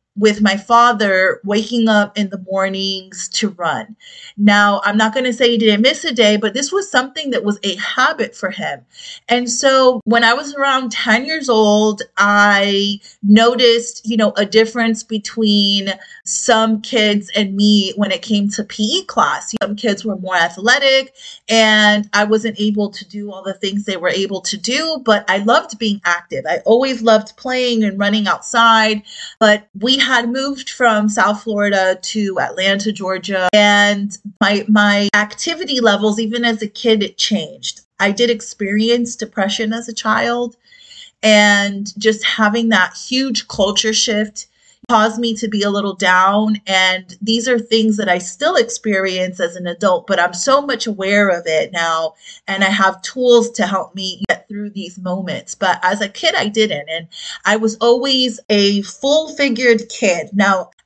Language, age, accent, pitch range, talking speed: English, 30-49, American, 200-235 Hz, 175 wpm